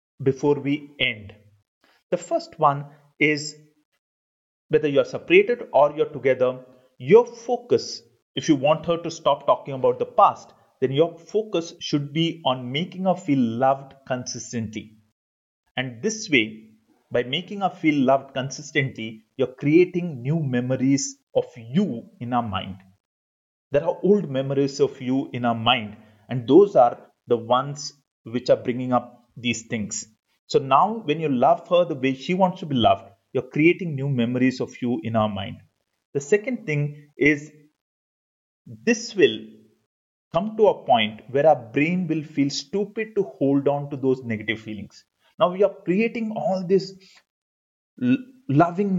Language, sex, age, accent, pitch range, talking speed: English, male, 30-49, Indian, 125-175 Hz, 160 wpm